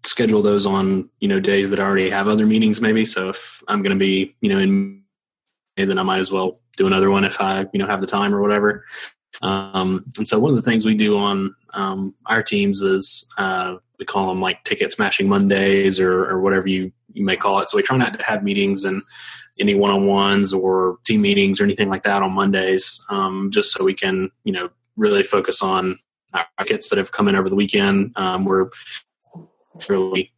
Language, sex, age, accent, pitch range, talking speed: English, male, 20-39, American, 95-110 Hz, 220 wpm